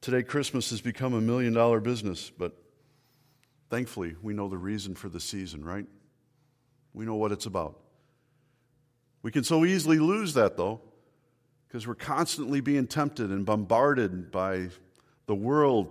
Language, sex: English, male